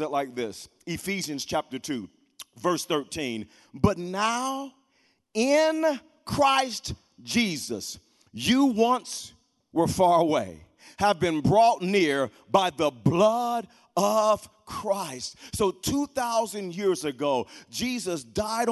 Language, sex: English, male